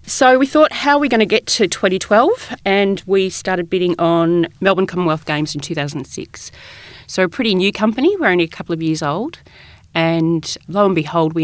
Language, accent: English, Australian